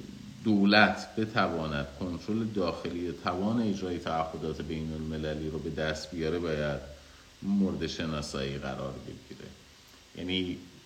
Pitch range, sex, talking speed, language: 75-90 Hz, male, 105 wpm, Persian